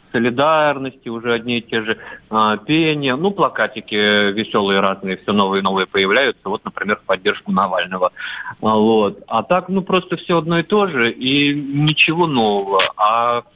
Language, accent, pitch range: Russian, native, 110-140 Hz